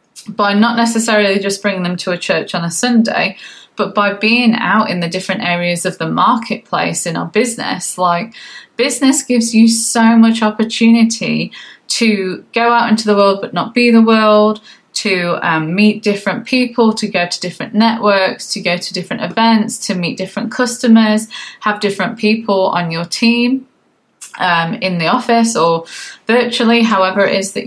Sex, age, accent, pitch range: female, 20-39, British, 185-230 Hz